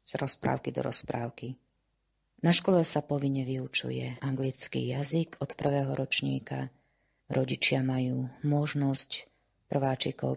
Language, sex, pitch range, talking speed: Slovak, female, 125-145 Hz, 105 wpm